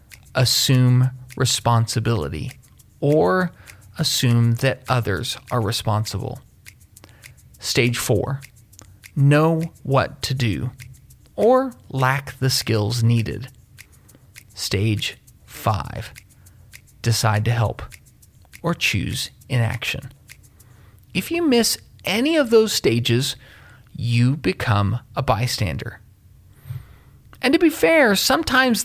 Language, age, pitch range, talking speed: English, 30-49, 115-150 Hz, 90 wpm